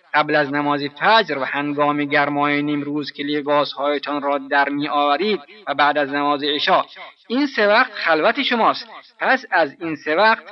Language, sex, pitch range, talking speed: Persian, male, 145-200 Hz, 170 wpm